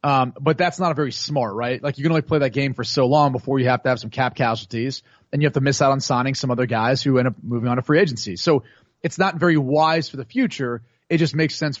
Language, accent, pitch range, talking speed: English, American, 135-185 Hz, 290 wpm